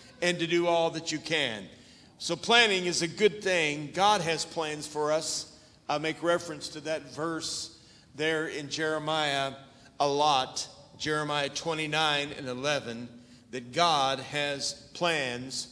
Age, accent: 50-69, American